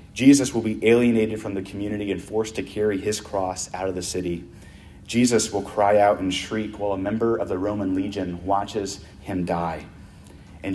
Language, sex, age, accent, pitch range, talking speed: English, male, 30-49, American, 90-110 Hz, 190 wpm